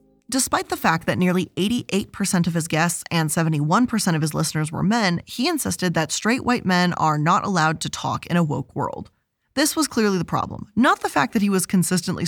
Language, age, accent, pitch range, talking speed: English, 20-39, American, 165-215 Hz, 210 wpm